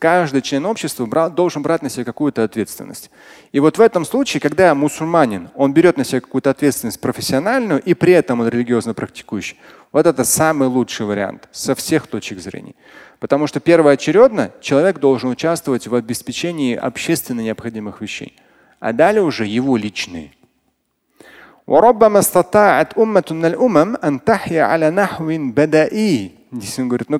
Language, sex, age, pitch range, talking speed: Russian, male, 30-49, 125-170 Hz, 130 wpm